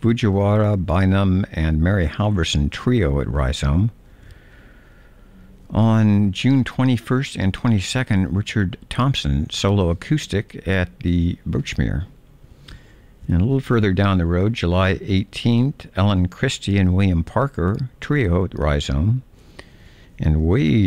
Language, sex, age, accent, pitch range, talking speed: English, male, 60-79, American, 85-115 Hz, 110 wpm